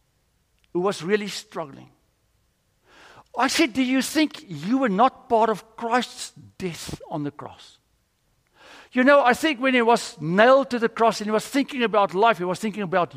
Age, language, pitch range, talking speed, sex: 60-79, English, 145-220 Hz, 180 wpm, male